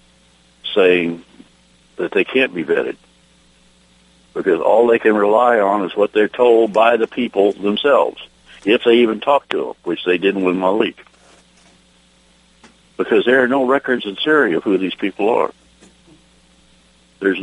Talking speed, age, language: 150 wpm, 60-79, English